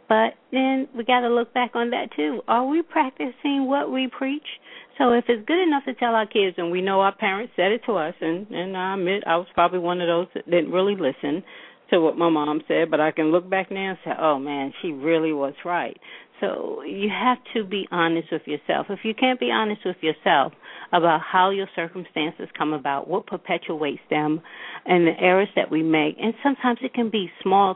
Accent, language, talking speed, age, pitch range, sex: American, English, 225 wpm, 50-69, 170-240 Hz, female